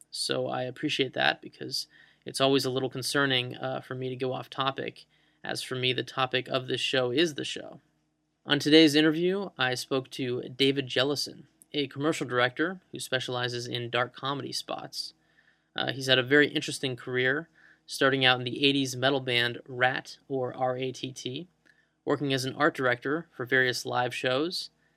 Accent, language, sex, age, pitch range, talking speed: American, English, male, 20-39, 125-140 Hz, 180 wpm